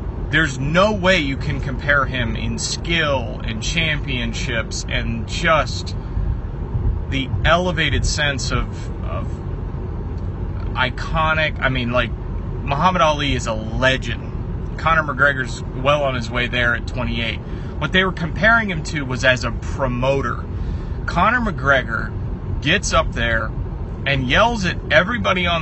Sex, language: male, English